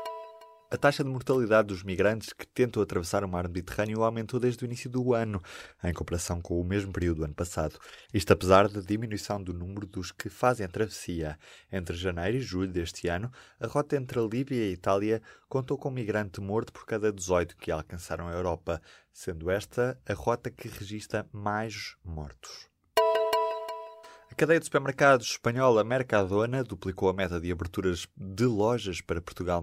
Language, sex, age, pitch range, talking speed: Portuguese, male, 20-39, 90-115 Hz, 175 wpm